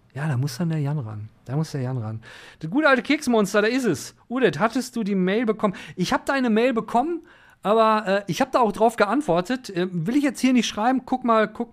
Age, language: 40-59, German